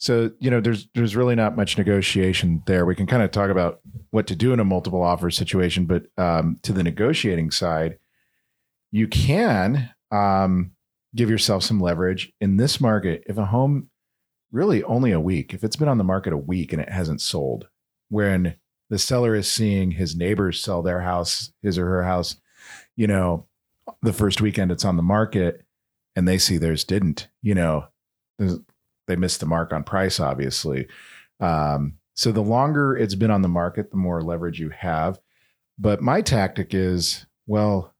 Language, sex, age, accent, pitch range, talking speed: English, male, 40-59, American, 85-110 Hz, 185 wpm